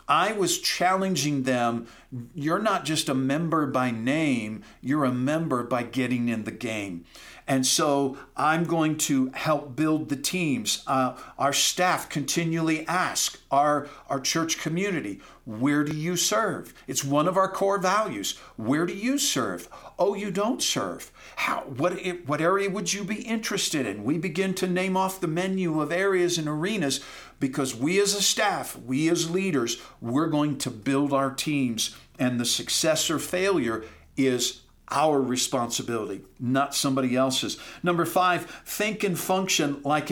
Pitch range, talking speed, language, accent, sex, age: 130-180 Hz, 160 wpm, English, American, male, 50-69